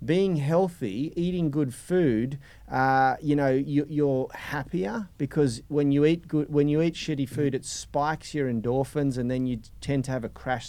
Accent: Australian